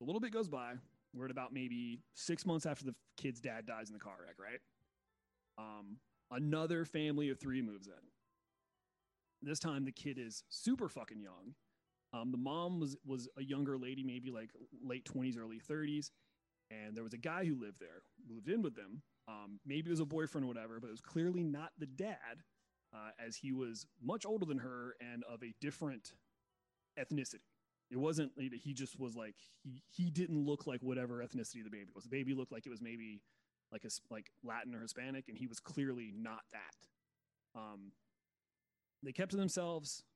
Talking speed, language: 195 wpm, English